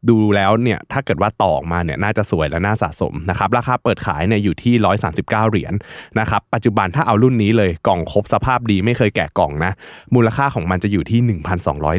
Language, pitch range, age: Thai, 85-105 Hz, 20-39